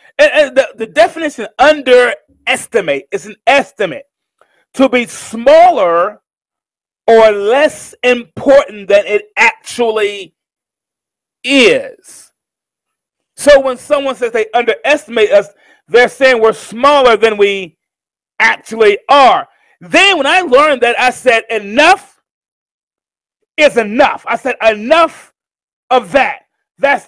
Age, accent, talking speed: 40-59, American, 105 wpm